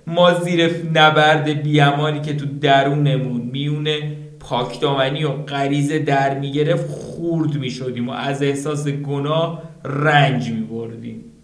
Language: Persian